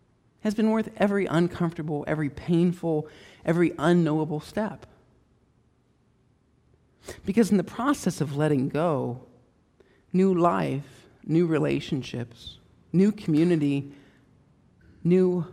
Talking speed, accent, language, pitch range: 95 wpm, American, English, 125-170 Hz